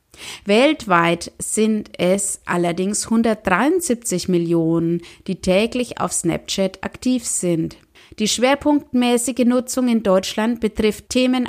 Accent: German